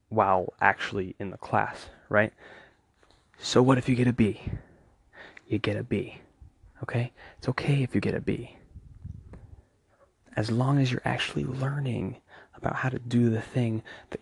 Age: 20-39